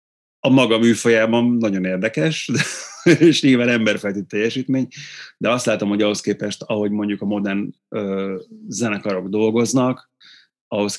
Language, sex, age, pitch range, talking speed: Hungarian, male, 30-49, 95-115 Hz, 130 wpm